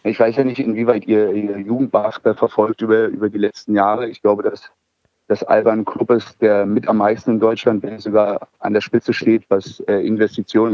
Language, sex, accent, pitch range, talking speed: German, male, German, 105-115 Hz, 195 wpm